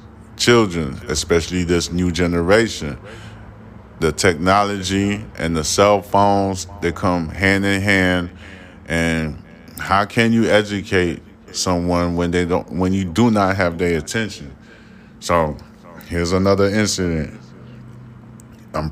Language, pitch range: English, 85-100 Hz